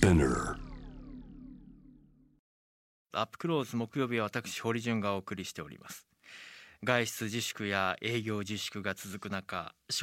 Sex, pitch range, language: male, 100-130 Hz, Japanese